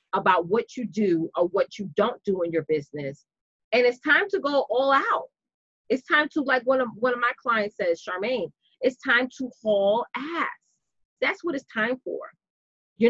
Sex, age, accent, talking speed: female, 30-49, American, 190 wpm